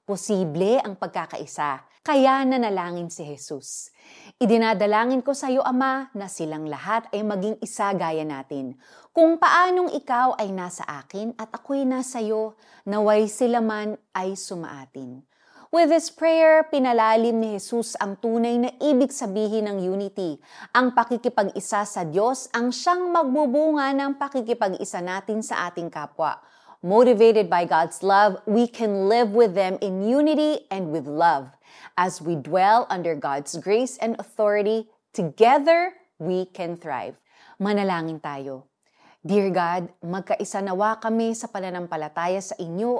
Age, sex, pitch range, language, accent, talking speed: 30-49, female, 180-245 Hz, Filipino, native, 135 wpm